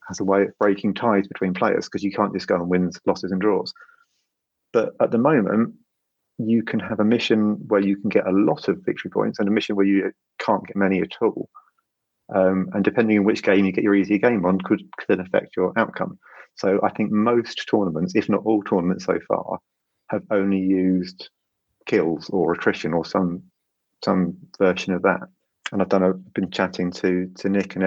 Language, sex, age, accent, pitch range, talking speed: English, male, 30-49, British, 95-110 Hz, 205 wpm